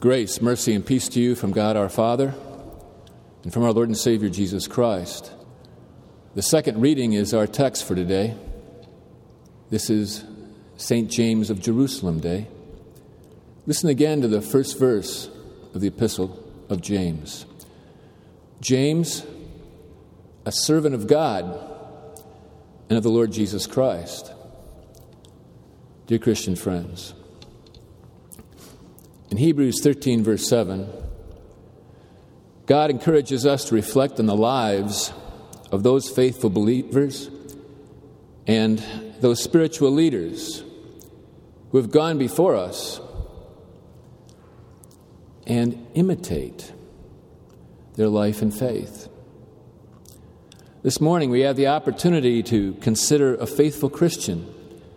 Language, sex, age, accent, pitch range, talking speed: English, male, 50-69, American, 105-140 Hz, 110 wpm